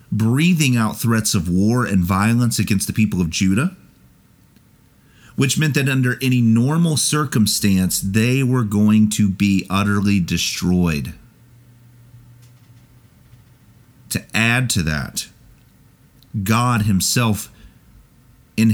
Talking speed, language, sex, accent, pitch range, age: 105 wpm, English, male, American, 100-125 Hz, 40-59